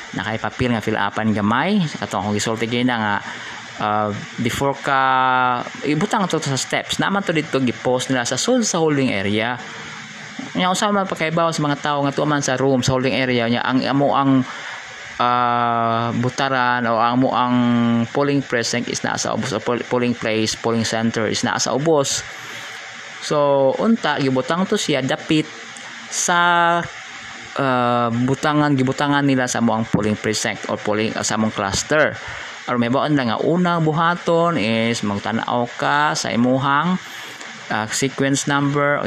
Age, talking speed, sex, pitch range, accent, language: 20-39, 160 wpm, male, 115-145 Hz, native, Filipino